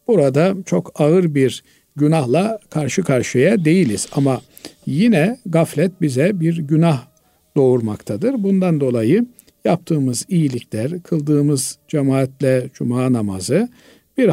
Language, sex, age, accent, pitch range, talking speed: Turkish, male, 50-69, native, 130-170 Hz, 100 wpm